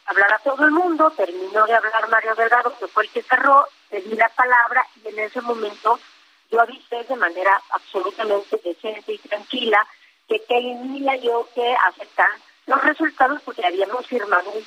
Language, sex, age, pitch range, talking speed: Spanish, female, 40-59, 210-265 Hz, 170 wpm